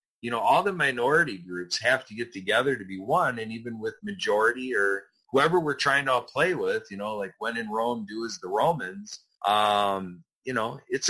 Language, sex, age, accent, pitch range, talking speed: English, male, 30-49, American, 95-150 Hz, 205 wpm